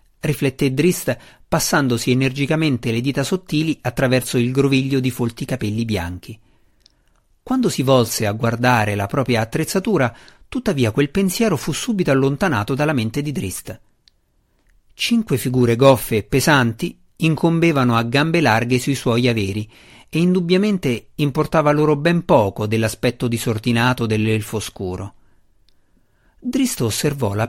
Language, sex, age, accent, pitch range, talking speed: Italian, male, 50-69, native, 115-160 Hz, 125 wpm